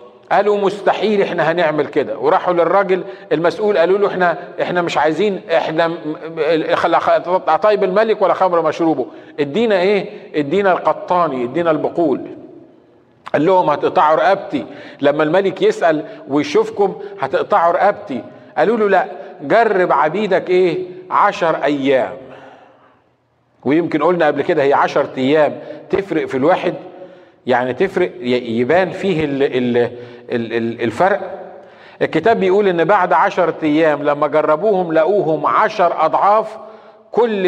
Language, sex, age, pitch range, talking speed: Arabic, male, 50-69, 160-205 Hz, 115 wpm